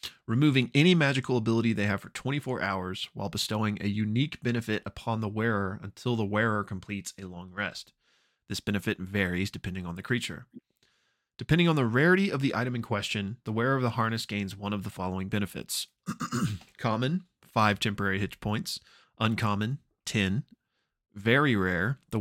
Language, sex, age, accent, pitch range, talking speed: English, male, 20-39, American, 100-130 Hz, 165 wpm